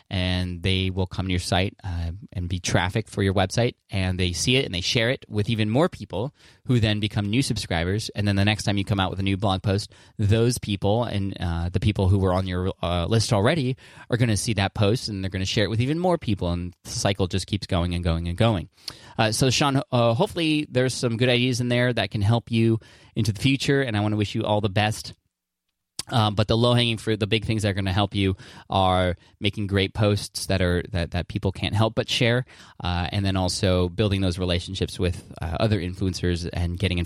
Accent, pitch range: American, 90-115 Hz